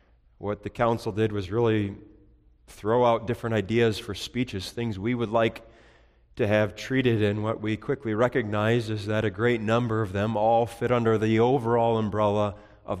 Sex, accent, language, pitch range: male, American, English, 100-125 Hz